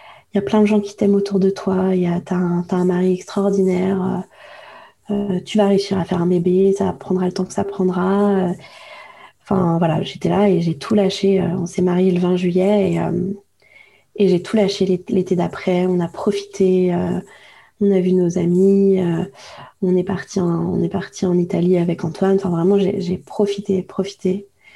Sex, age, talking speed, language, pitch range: female, 20-39, 205 wpm, French, 180-200 Hz